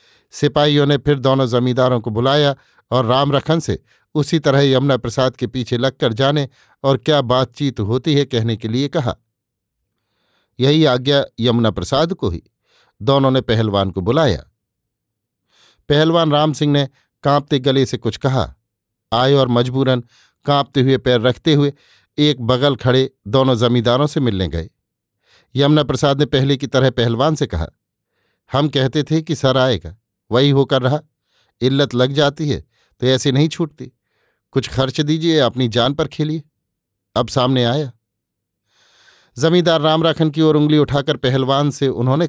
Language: Hindi